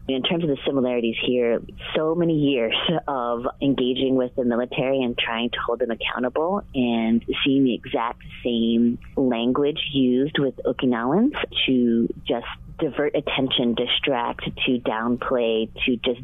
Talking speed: 140 wpm